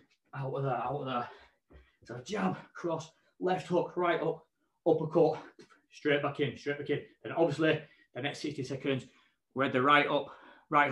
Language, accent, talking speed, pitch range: English, British, 170 wpm, 165-210 Hz